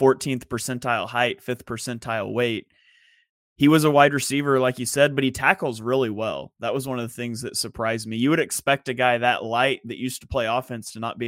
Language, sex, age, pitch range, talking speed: English, male, 20-39, 115-140 Hz, 230 wpm